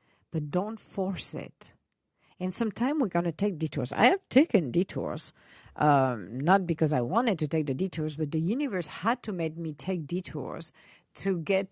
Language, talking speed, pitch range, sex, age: English, 175 wpm, 155-200 Hz, female, 50-69